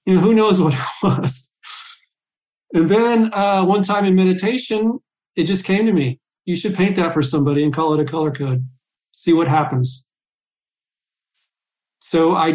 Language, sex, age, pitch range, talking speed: English, male, 40-59, 150-180 Hz, 170 wpm